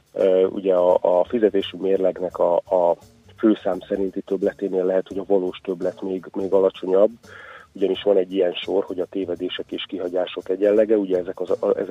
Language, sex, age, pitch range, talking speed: Hungarian, male, 30-49, 90-105 Hz, 165 wpm